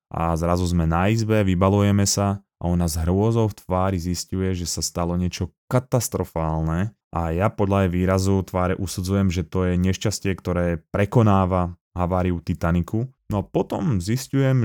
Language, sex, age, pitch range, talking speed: Slovak, male, 20-39, 90-110 Hz, 155 wpm